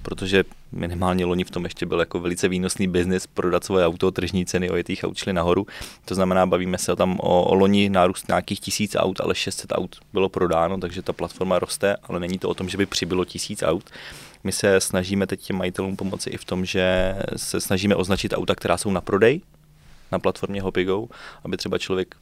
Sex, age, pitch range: male, 20-39, 90-95 Hz